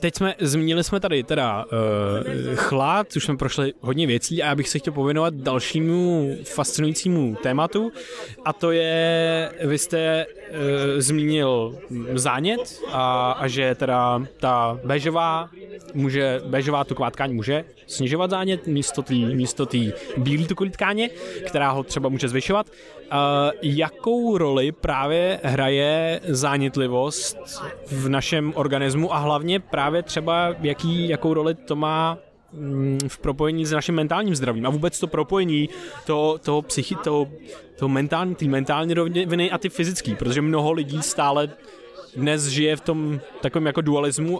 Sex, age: male, 20-39